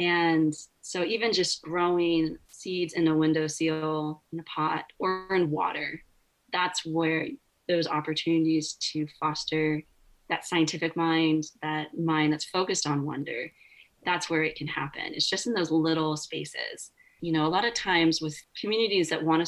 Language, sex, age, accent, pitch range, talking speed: English, female, 30-49, American, 155-185 Hz, 160 wpm